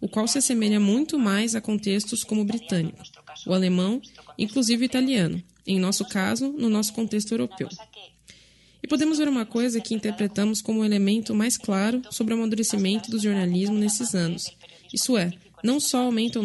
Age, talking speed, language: 10-29, 175 wpm, Portuguese